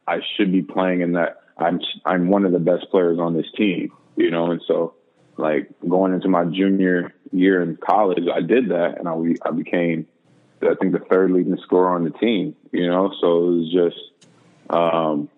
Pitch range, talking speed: 85-95 Hz, 205 wpm